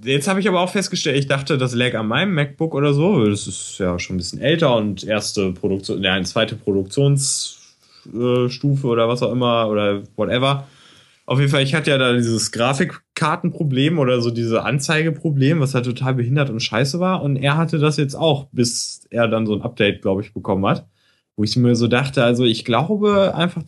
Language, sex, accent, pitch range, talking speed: German, male, German, 115-145 Hz, 210 wpm